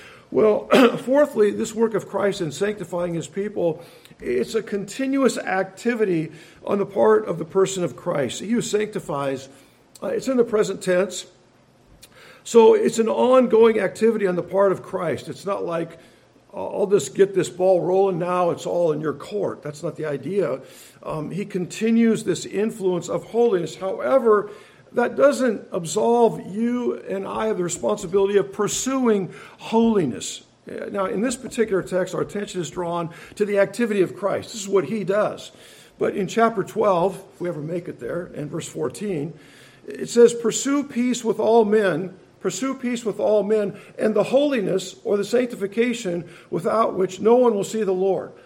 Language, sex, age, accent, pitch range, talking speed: English, male, 50-69, American, 175-225 Hz, 170 wpm